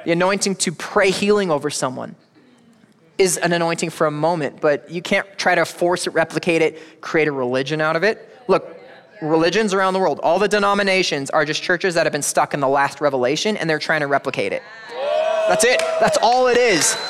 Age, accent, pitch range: 20-39, American, 155-215 Hz